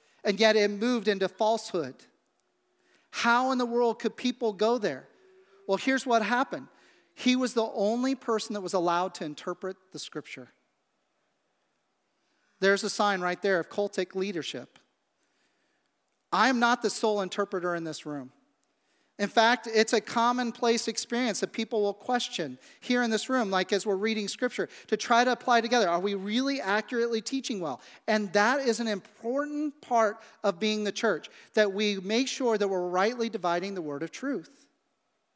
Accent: American